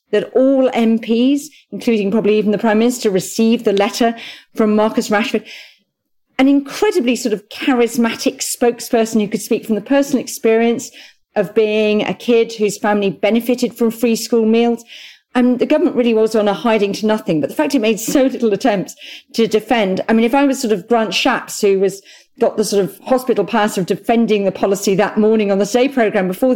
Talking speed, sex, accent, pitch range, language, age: 195 wpm, female, British, 205-250 Hz, English, 40-59